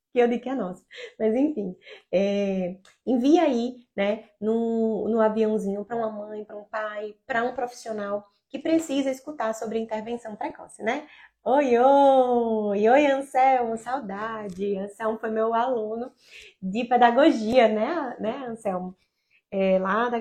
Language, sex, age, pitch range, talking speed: Portuguese, female, 20-39, 210-275 Hz, 145 wpm